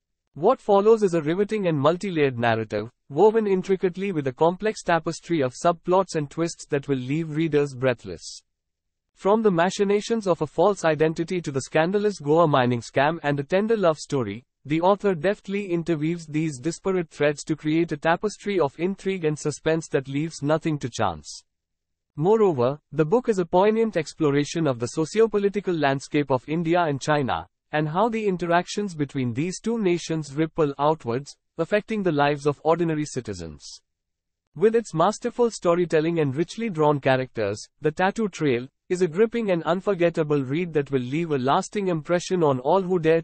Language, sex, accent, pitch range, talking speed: English, male, Indian, 140-185 Hz, 170 wpm